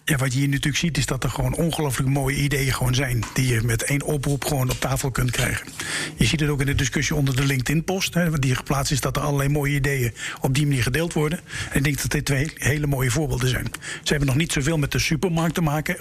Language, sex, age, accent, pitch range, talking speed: Dutch, male, 50-69, Dutch, 135-160 Hz, 260 wpm